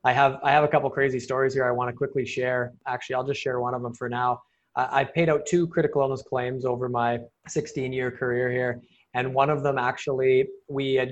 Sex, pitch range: male, 125-140 Hz